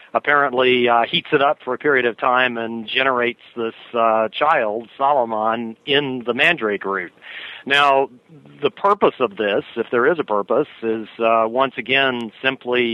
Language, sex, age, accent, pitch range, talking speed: English, male, 40-59, American, 110-130 Hz, 160 wpm